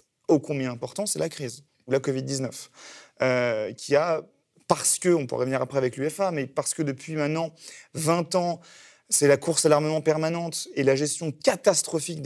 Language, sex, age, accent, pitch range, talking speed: French, male, 30-49, French, 140-180 Hz, 180 wpm